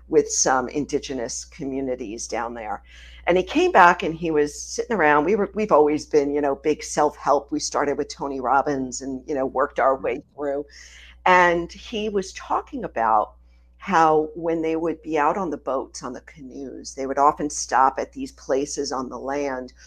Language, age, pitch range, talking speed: English, 50-69, 130-165 Hz, 195 wpm